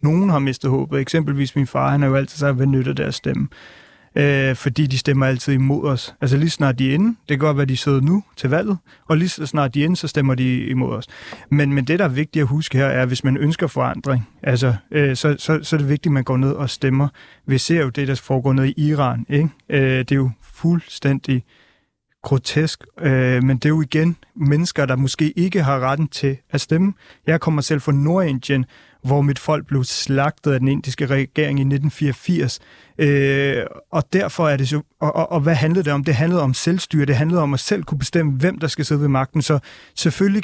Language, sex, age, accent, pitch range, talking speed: Danish, male, 30-49, native, 135-155 Hz, 235 wpm